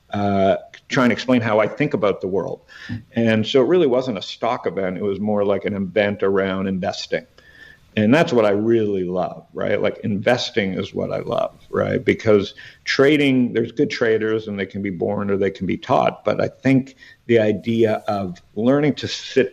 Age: 50-69